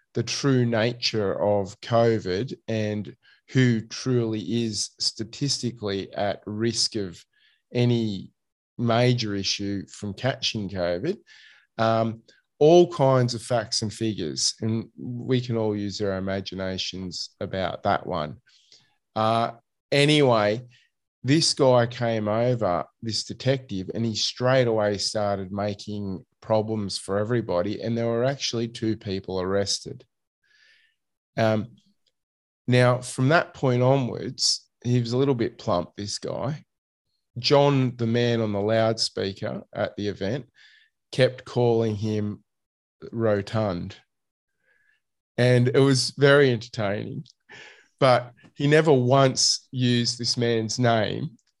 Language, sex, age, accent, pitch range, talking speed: English, male, 20-39, Australian, 105-125 Hz, 115 wpm